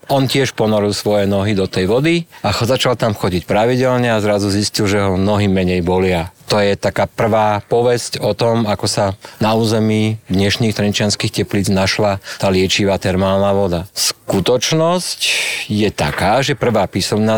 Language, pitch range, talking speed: Slovak, 100-115 Hz, 160 wpm